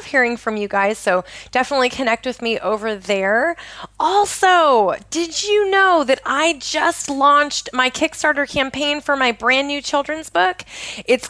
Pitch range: 210-275 Hz